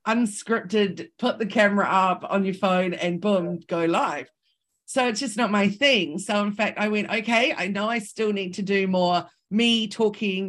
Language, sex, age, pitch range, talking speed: English, female, 40-59, 185-230 Hz, 195 wpm